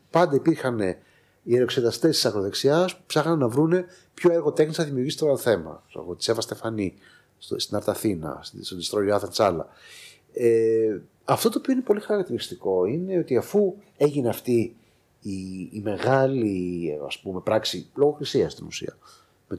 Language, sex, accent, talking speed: Greek, male, native, 155 wpm